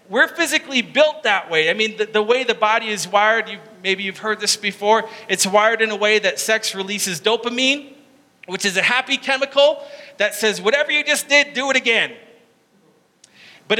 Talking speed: 190 wpm